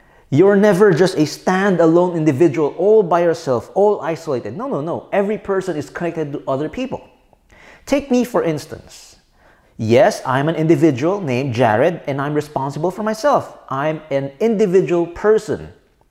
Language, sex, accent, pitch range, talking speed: English, male, Filipino, 140-215 Hz, 150 wpm